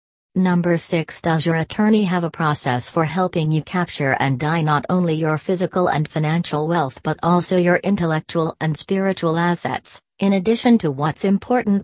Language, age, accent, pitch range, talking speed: English, 40-59, American, 150-180 Hz, 165 wpm